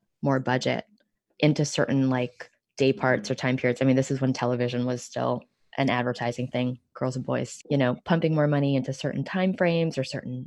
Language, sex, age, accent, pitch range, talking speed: English, female, 20-39, American, 125-145 Hz, 200 wpm